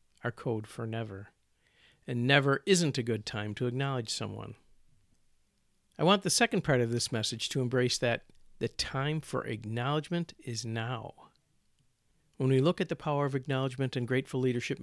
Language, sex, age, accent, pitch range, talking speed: English, male, 50-69, American, 115-160 Hz, 160 wpm